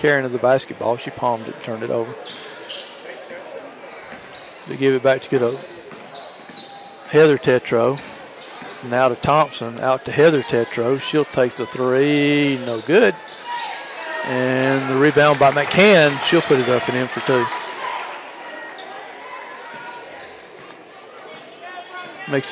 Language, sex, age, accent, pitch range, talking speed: English, male, 50-69, American, 125-145 Hz, 125 wpm